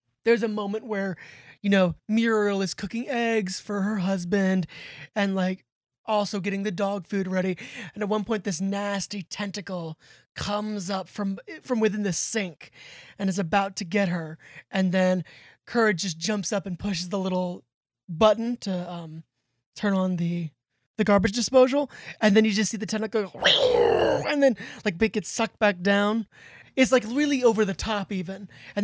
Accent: American